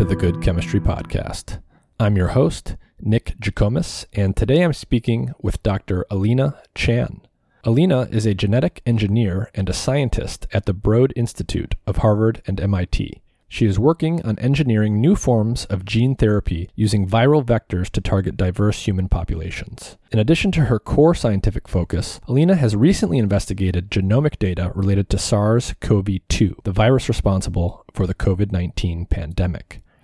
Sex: male